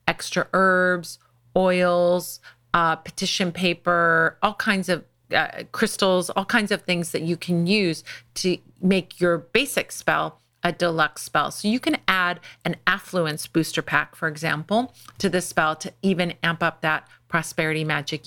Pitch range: 160-200 Hz